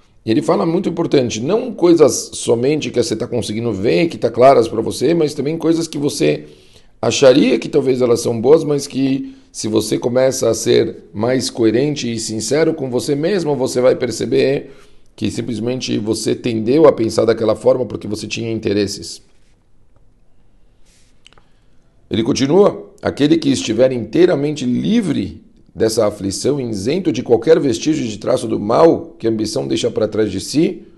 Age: 40-59